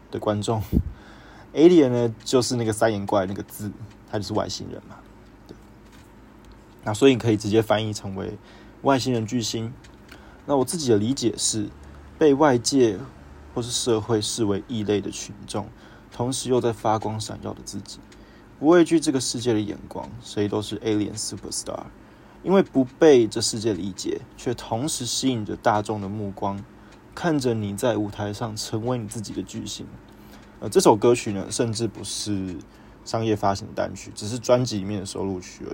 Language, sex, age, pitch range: Chinese, male, 20-39, 105-120 Hz